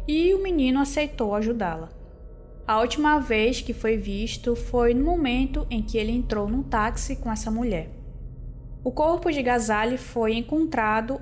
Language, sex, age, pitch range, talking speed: Portuguese, female, 20-39, 215-270 Hz, 155 wpm